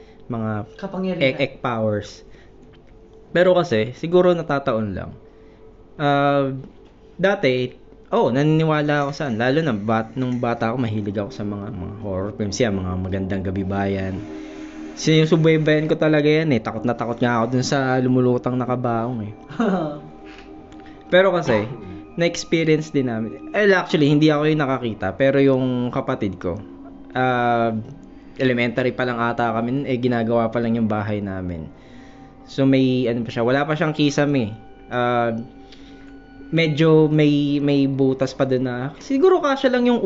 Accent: native